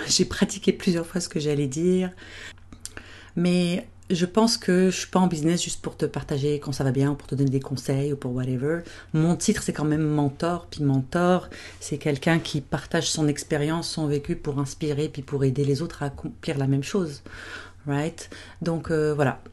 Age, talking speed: 40-59, 205 wpm